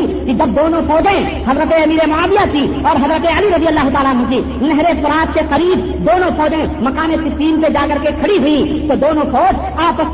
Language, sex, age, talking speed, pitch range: Urdu, female, 40-59, 200 wpm, 280-340 Hz